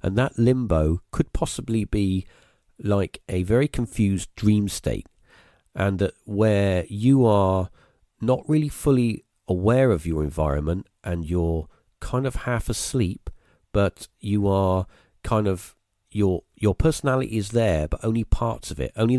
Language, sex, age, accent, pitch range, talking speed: English, male, 40-59, British, 95-115 Hz, 145 wpm